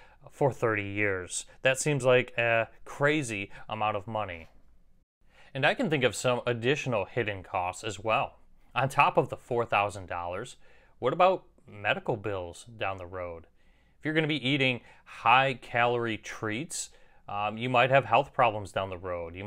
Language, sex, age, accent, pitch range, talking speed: English, male, 30-49, American, 105-135 Hz, 160 wpm